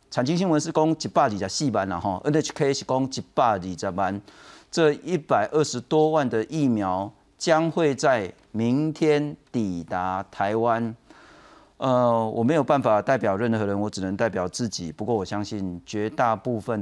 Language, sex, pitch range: Chinese, male, 100-135 Hz